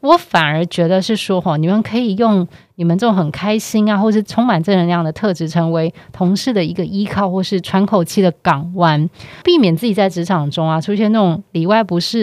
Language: Chinese